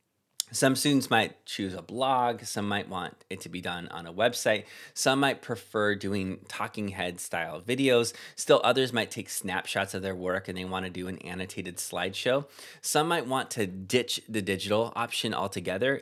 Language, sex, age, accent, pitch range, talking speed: English, male, 20-39, American, 95-120 Hz, 180 wpm